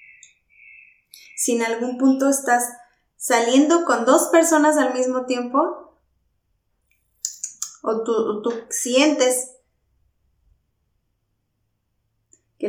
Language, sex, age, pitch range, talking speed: Spanish, female, 20-39, 215-265 Hz, 85 wpm